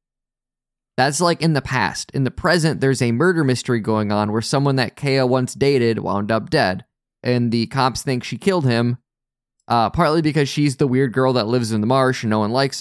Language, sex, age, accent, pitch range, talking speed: English, male, 20-39, American, 115-145 Hz, 215 wpm